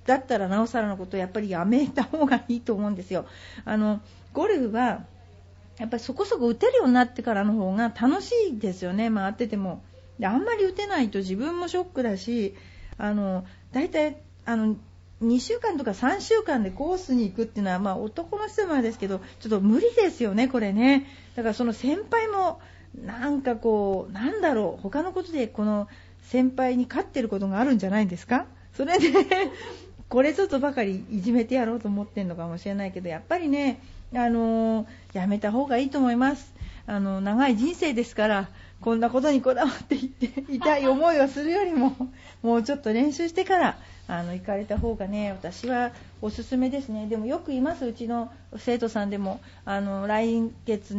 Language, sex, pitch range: Japanese, female, 210-275 Hz